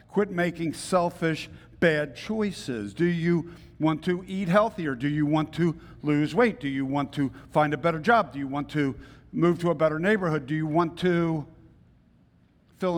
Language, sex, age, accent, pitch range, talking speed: English, male, 50-69, American, 130-165 Hz, 180 wpm